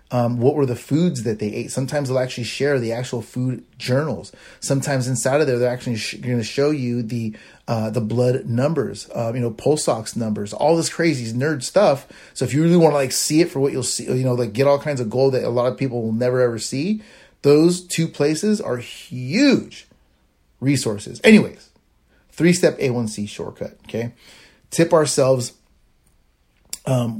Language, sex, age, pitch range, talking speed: English, male, 30-49, 120-170 Hz, 190 wpm